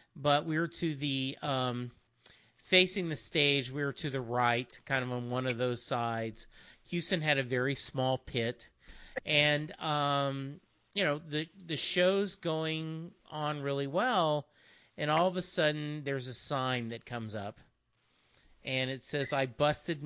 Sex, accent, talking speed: male, American, 165 wpm